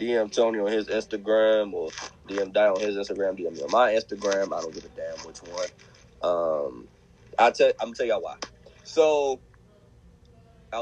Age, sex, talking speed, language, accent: 20-39, male, 190 wpm, English, American